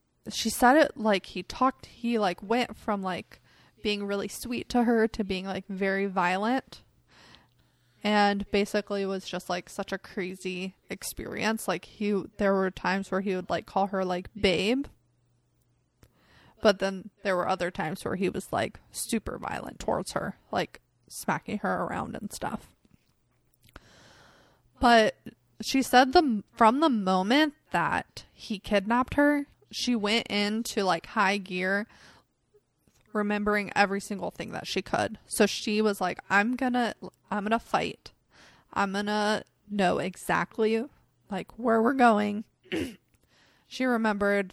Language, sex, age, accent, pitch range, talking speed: English, female, 20-39, American, 195-230 Hz, 145 wpm